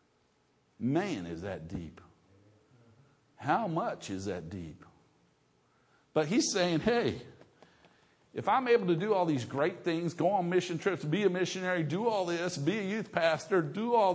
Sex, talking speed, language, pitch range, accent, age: male, 160 wpm, English, 130-175 Hz, American, 50-69